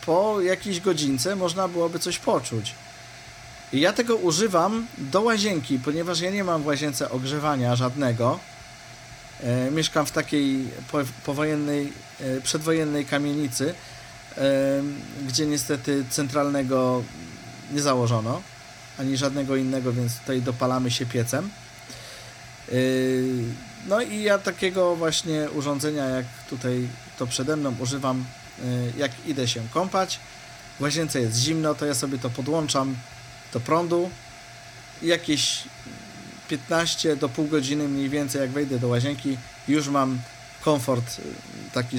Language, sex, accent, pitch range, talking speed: Polish, male, native, 125-150 Hz, 115 wpm